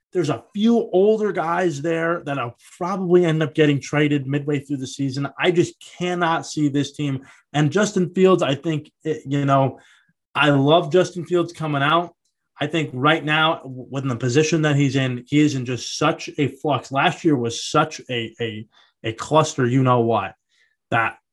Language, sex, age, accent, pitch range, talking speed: English, male, 20-39, American, 130-170 Hz, 185 wpm